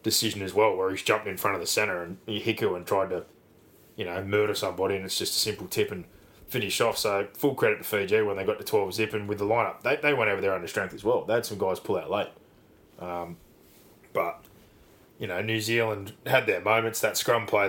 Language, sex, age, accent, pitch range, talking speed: English, male, 20-39, Australian, 95-105 Hz, 250 wpm